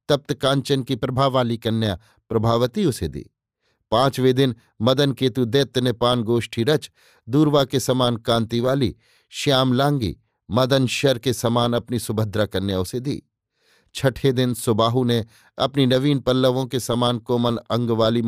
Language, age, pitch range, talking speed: Hindi, 50-69, 115-140 Hz, 150 wpm